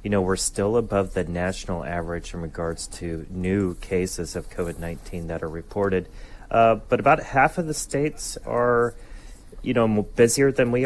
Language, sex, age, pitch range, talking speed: English, male, 30-49, 85-100 Hz, 170 wpm